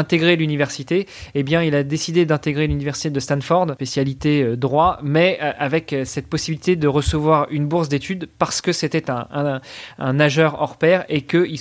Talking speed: 175 wpm